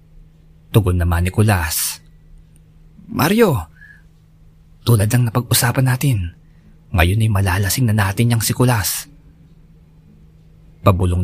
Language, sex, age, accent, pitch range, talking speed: Filipino, male, 20-39, native, 80-125 Hz, 90 wpm